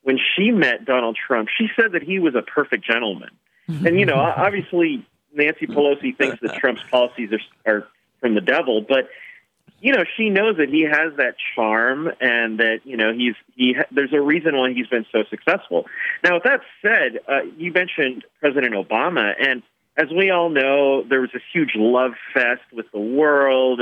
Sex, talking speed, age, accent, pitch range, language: male, 190 wpm, 40-59, American, 125-180 Hz, English